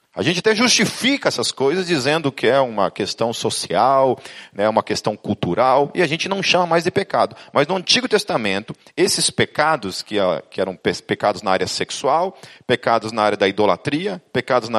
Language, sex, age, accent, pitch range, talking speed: Portuguese, male, 40-59, Brazilian, 135-190 Hz, 180 wpm